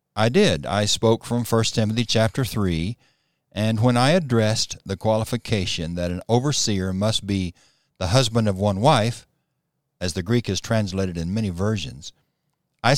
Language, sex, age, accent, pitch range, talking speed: English, male, 60-79, American, 100-130 Hz, 155 wpm